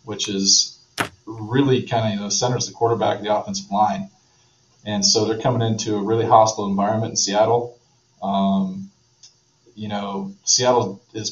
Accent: American